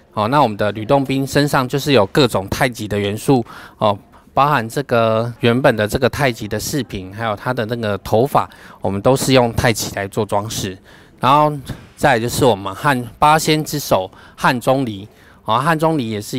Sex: male